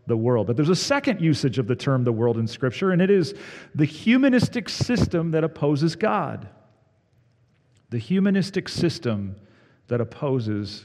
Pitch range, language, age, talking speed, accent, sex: 115-155 Hz, English, 40-59, 155 wpm, American, male